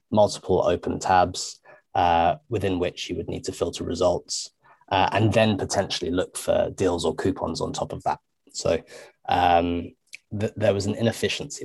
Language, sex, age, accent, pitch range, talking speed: English, male, 20-39, British, 95-115 Hz, 160 wpm